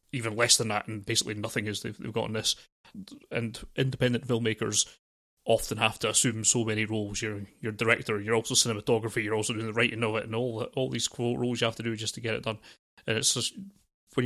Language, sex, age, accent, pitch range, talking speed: English, male, 30-49, British, 110-130 Hz, 235 wpm